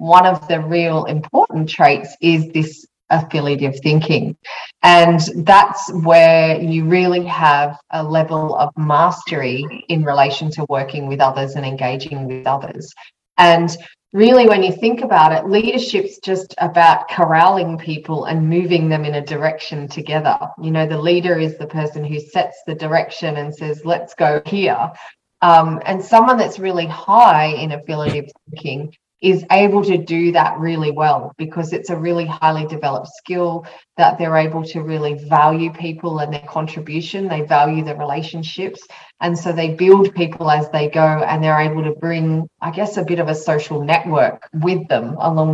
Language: English